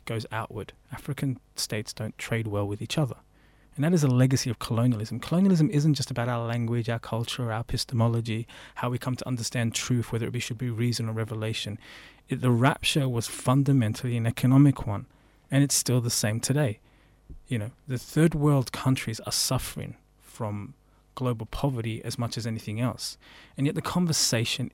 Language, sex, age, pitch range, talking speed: English, male, 20-39, 110-135 Hz, 175 wpm